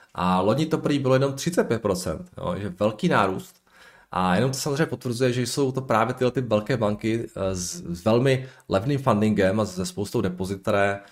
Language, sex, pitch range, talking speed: Czech, male, 95-125 Hz, 165 wpm